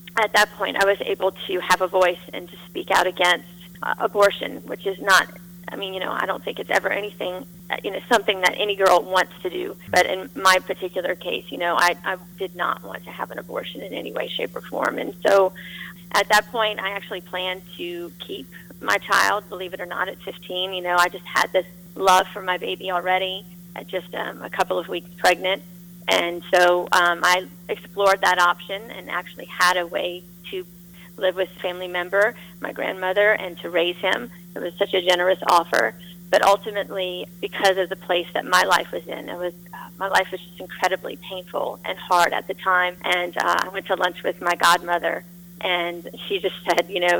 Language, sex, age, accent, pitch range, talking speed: English, female, 30-49, American, 175-195 Hz, 210 wpm